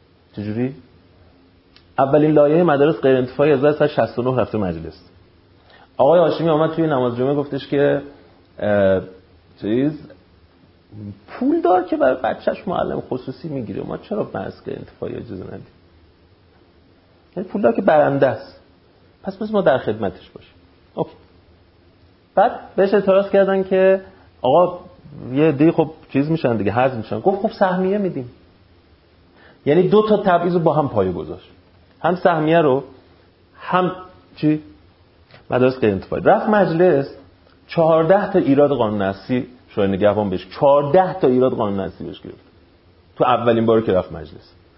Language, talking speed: English, 140 wpm